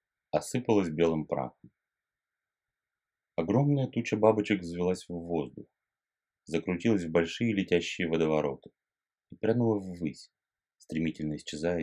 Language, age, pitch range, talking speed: Russian, 30-49, 80-95 Hz, 95 wpm